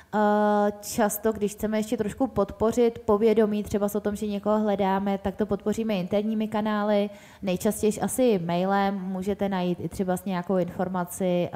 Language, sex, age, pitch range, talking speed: Czech, female, 20-39, 185-215 Hz, 150 wpm